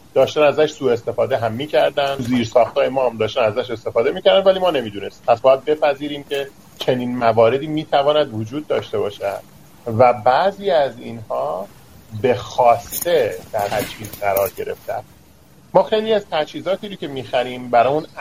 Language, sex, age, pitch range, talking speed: Persian, male, 40-59, 115-150 Hz, 160 wpm